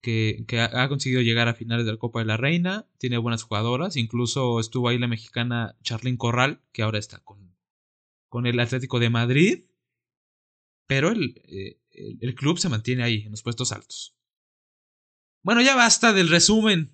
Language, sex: Spanish, male